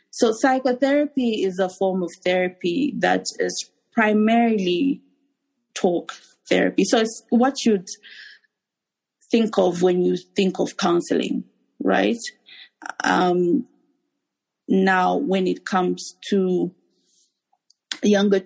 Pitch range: 185-245 Hz